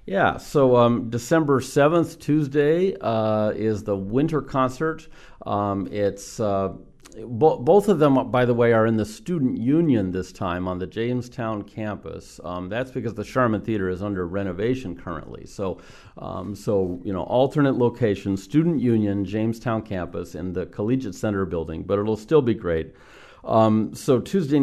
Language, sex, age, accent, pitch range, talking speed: English, male, 50-69, American, 95-120 Hz, 160 wpm